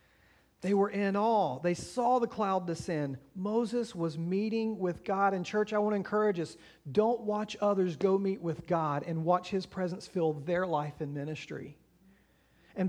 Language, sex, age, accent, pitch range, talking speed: English, male, 40-59, American, 160-210 Hz, 175 wpm